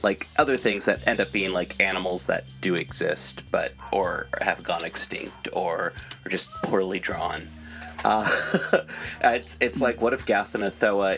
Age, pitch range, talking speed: 30-49, 95-105 Hz, 155 wpm